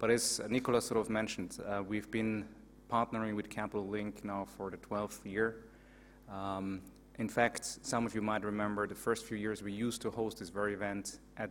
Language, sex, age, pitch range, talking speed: English, male, 30-49, 100-110 Hz, 200 wpm